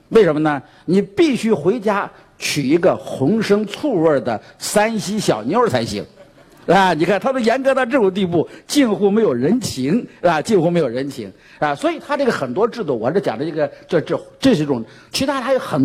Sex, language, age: male, Chinese, 50-69